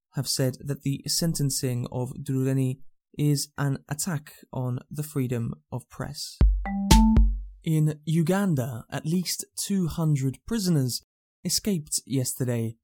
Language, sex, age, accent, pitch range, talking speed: English, male, 20-39, British, 125-155 Hz, 105 wpm